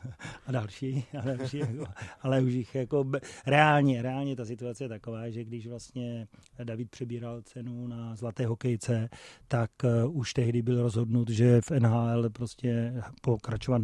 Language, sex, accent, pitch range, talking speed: Czech, male, native, 115-125 Hz, 145 wpm